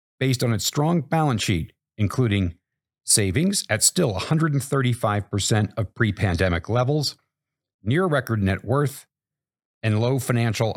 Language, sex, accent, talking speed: English, male, American, 115 wpm